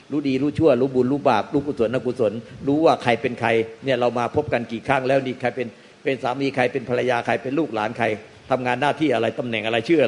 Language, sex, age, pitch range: Thai, male, 60-79, 120-150 Hz